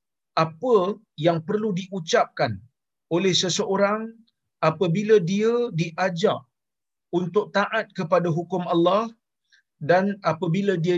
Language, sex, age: Malayalam, male, 40-59